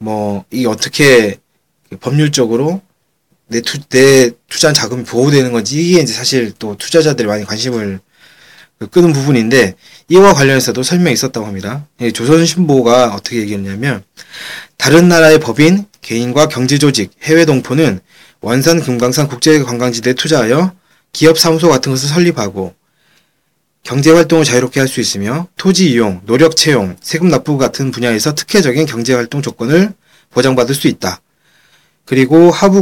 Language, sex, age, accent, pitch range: Korean, male, 20-39, native, 120-165 Hz